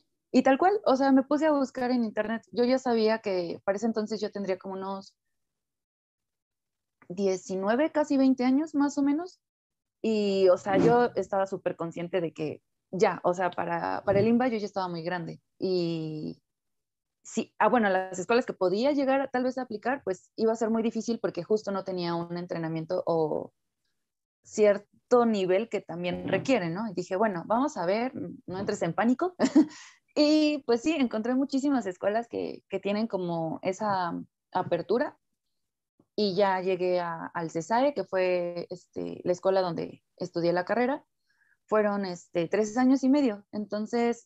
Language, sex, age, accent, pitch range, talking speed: Spanish, female, 30-49, Mexican, 180-235 Hz, 170 wpm